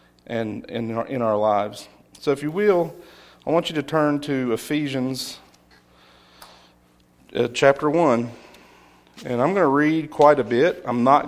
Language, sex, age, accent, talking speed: English, male, 40-59, American, 155 wpm